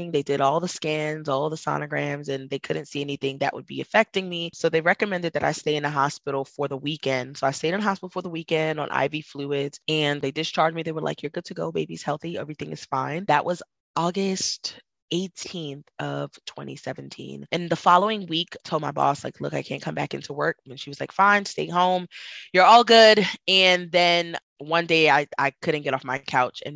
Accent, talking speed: American, 230 wpm